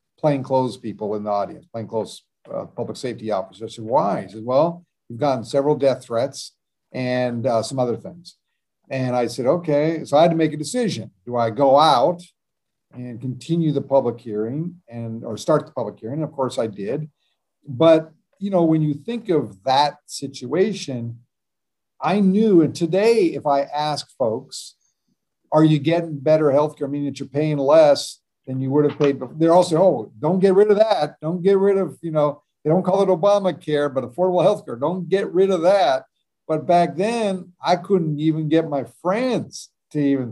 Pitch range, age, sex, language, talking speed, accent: 130-170 Hz, 50-69, male, English, 195 wpm, American